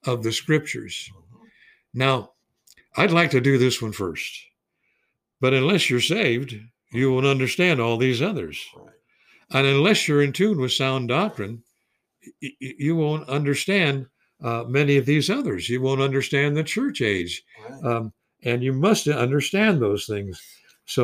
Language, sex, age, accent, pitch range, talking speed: English, male, 60-79, American, 110-140 Hz, 145 wpm